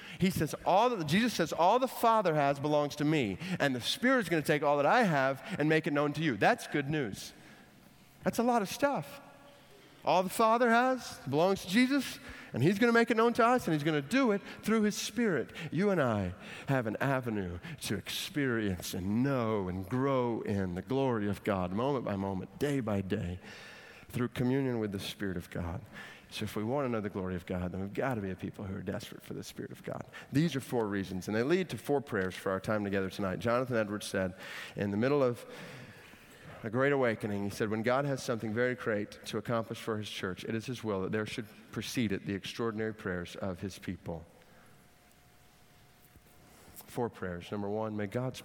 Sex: male